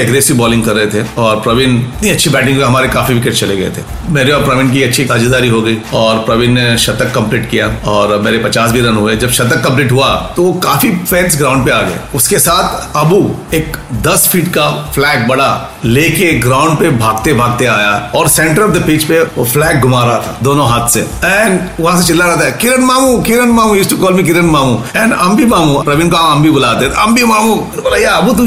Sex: male